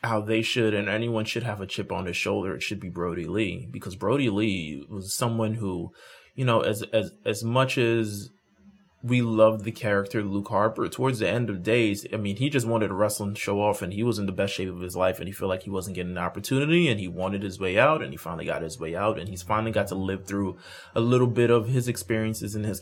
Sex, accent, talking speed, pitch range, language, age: male, American, 260 wpm, 95-115 Hz, English, 20-39